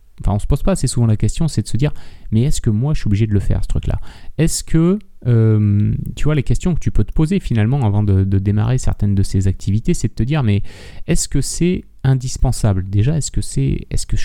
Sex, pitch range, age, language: male, 100-130 Hz, 30-49, French